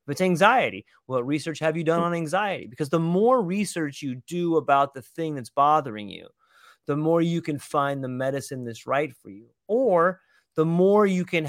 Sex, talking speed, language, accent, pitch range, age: male, 200 wpm, English, American, 140-185 Hz, 30-49